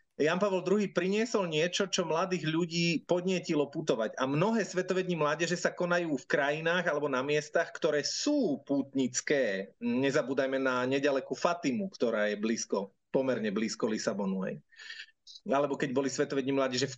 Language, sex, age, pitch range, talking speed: Slovak, male, 30-49, 135-180 Hz, 140 wpm